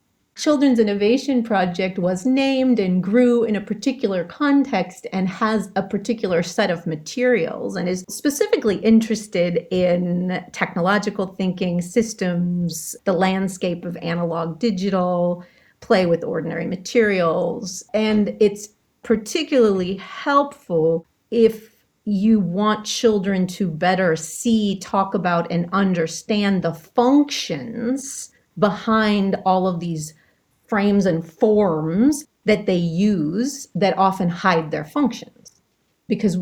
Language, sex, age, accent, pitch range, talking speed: English, female, 40-59, American, 175-220 Hz, 110 wpm